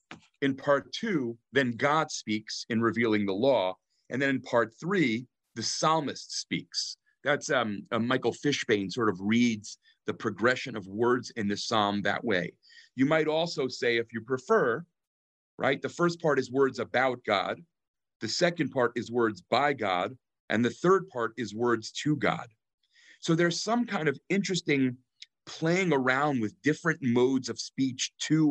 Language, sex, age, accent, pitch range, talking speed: English, male, 40-59, American, 110-145 Hz, 165 wpm